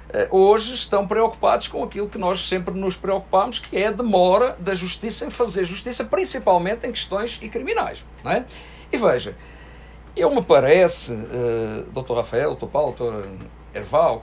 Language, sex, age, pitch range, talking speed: English, male, 50-69, 135-210 Hz, 160 wpm